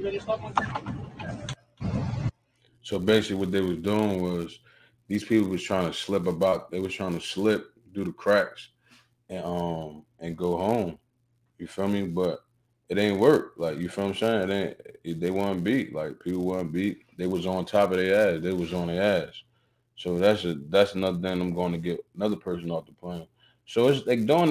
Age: 20-39